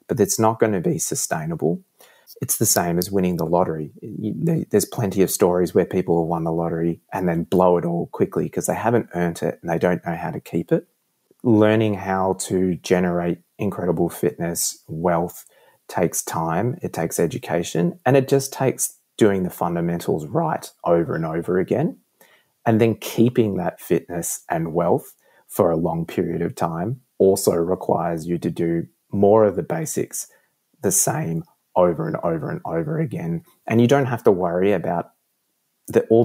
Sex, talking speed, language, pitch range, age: male, 175 wpm, English, 85-115 Hz, 30-49